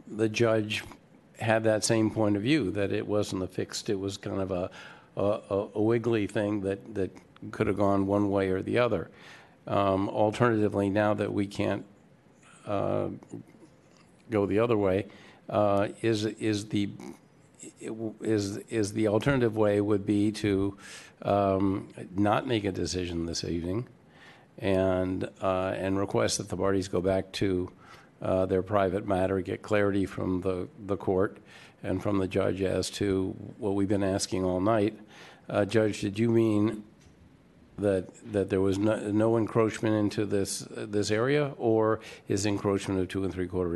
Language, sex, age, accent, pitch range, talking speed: English, male, 50-69, American, 95-105 Hz, 165 wpm